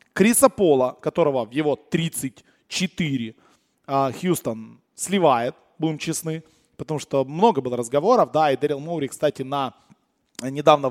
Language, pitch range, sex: Russian, 150-185 Hz, male